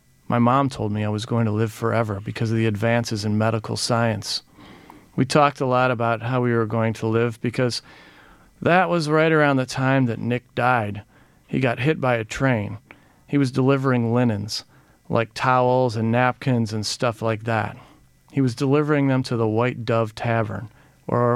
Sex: male